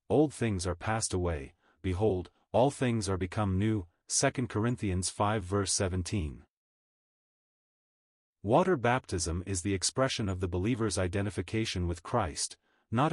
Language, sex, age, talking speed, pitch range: English, male, 40-59, 130 wpm, 90-120 Hz